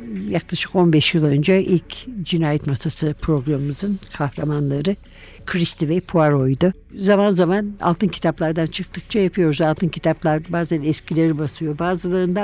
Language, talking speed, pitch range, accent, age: Turkish, 115 wpm, 160-190 Hz, native, 60-79